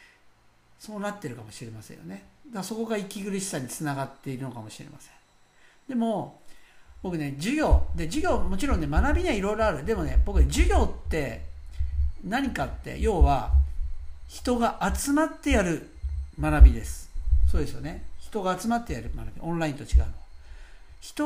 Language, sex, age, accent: Japanese, male, 60-79, native